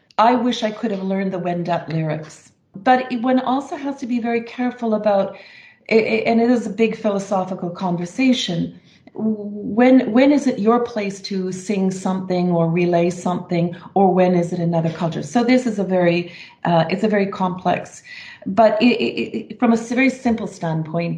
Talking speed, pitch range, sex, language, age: 175 wpm, 170-210 Hz, female, English, 40-59